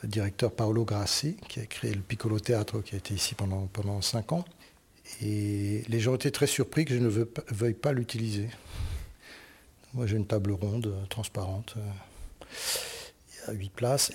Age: 60-79